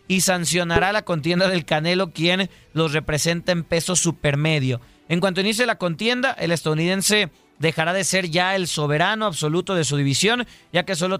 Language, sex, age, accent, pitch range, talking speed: Spanish, male, 30-49, Mexican, 155-205 Hz, 170 wpm